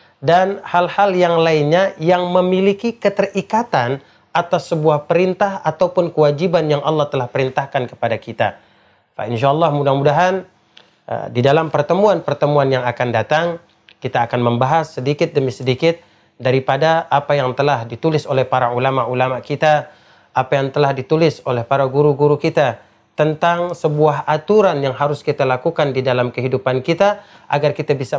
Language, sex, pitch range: Indonesian, male, 130-170 Hz